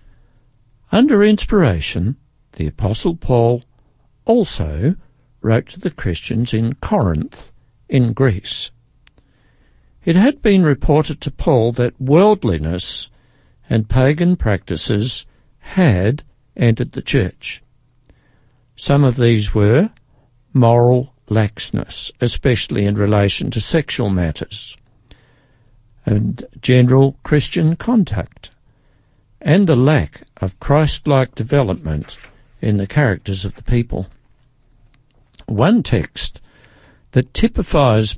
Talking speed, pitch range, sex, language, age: 95 wpm, 110-140 Hz, male, English, 60-79